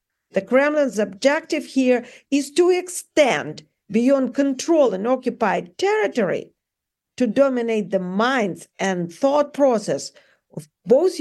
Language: English